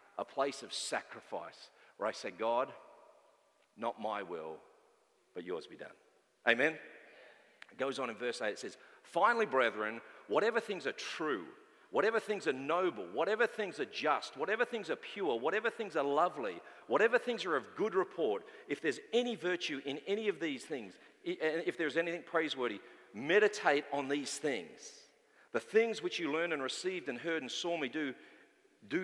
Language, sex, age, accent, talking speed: English, male, 40-59, Australian, 170 wpm